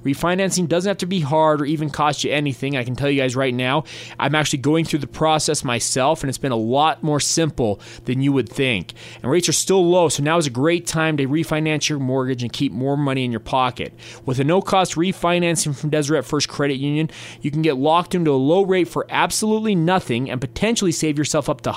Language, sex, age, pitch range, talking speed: English, male, 30-49, 135-175 Hz, 230 wpm